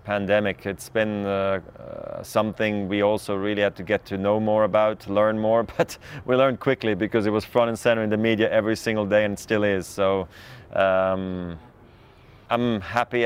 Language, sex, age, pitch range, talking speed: English, male, 30-49, 95-105 Hz, 185 wpm